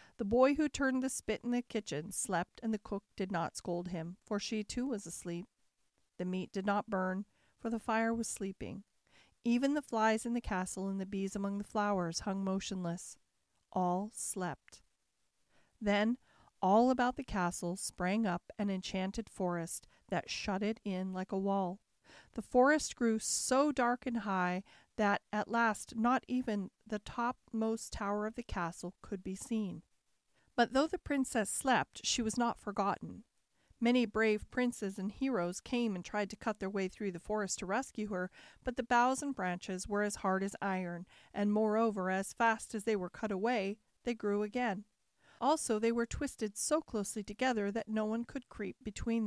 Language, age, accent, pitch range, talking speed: English, 40-59, American, 195-240 Hz, 180 wpm